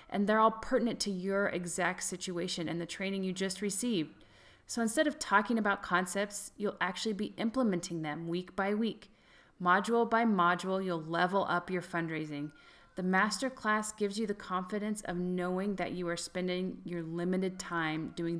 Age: 30-49